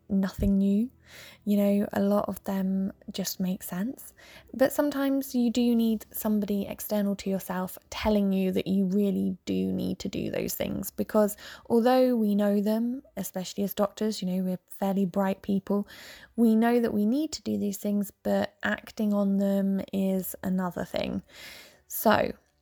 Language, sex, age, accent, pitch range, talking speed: English, female, 10-29, British, 190-215 Hz, 165 wpm